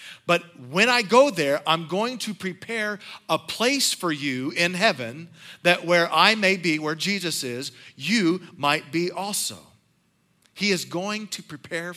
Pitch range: 135-190 Hz